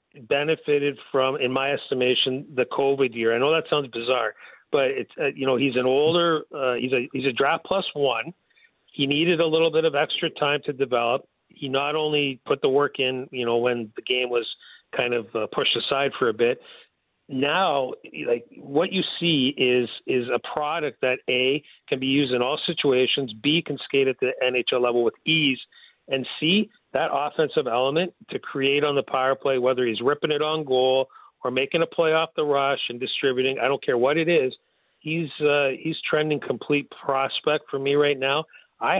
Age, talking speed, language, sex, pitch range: 40-59, 195 wpm, English, male, 130-160 Hz